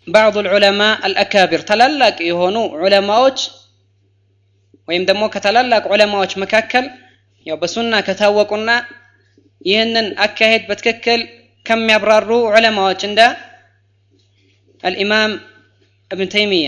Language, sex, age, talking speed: Amharic, female, 20-39, 70 wpm